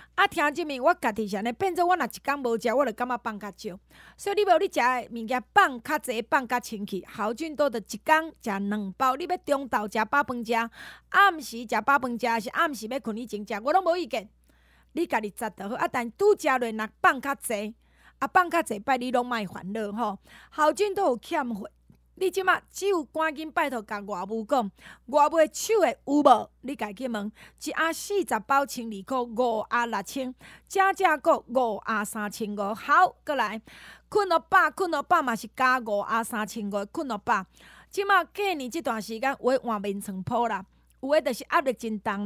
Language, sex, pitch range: Chinese, female, 225-325 Hz